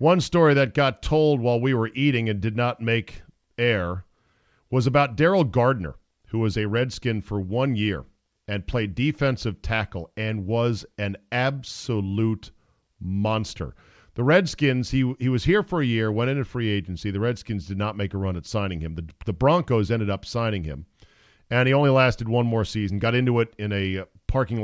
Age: 40-59